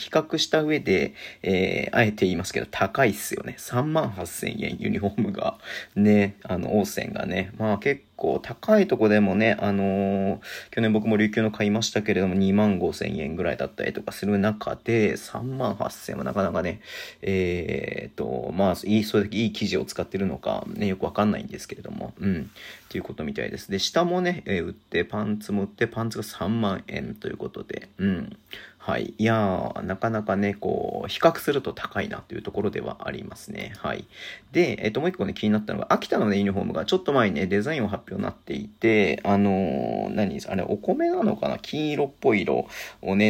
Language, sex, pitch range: Japanese, male, 100-125 Hz